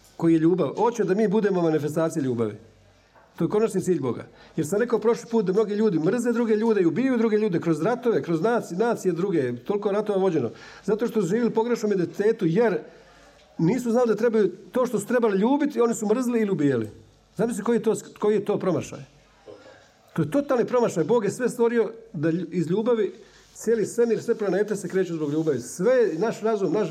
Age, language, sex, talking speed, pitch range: 50-69, Croatian, male, 200 wpm, 155-225 Hz